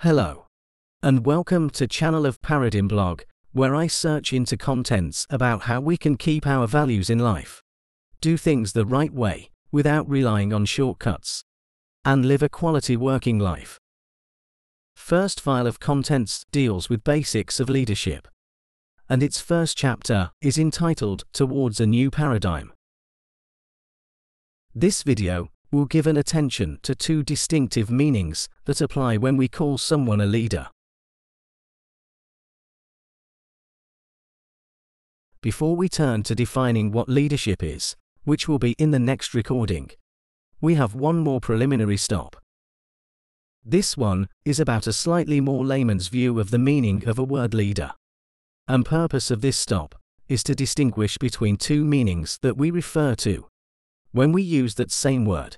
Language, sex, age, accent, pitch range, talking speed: English, male, 40-59, British, 105-145 Hz, 145 wpm